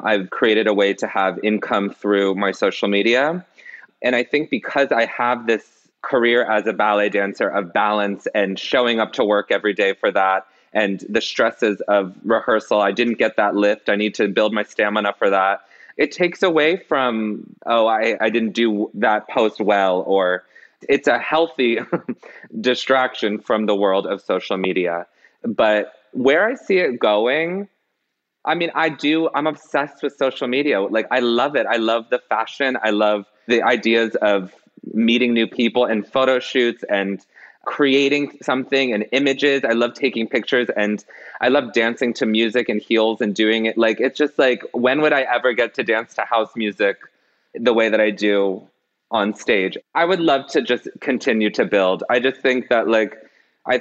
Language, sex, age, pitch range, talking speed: English, male, 30-49, 105-125 Hz, 185 wpm